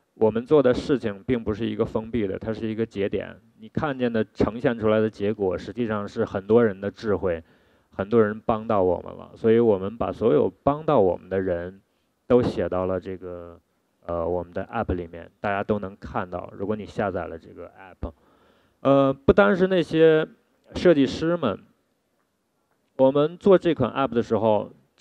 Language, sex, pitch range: Chinese, male, 100-135 Hz